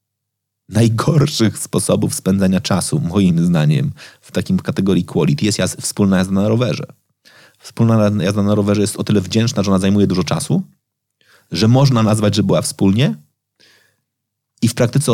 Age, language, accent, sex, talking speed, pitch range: 30-49, Polish, native, male, 150 wpm, 100-135 Hz